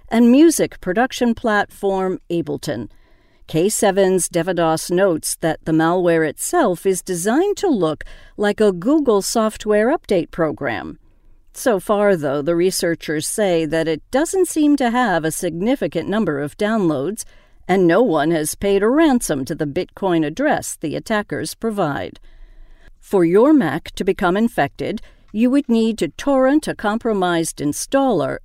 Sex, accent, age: female, American, 50-69